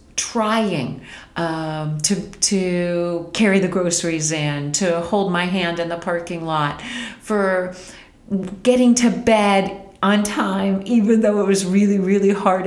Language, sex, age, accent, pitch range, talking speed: English, female, 40-59, American, 165-200 Hz, 135 wpm